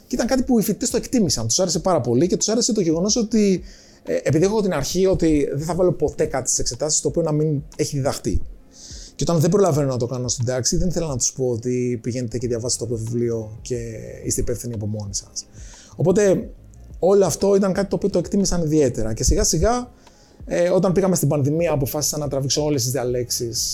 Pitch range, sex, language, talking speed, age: 120-175 Hz, male, Greek, 220 wpm, 30-49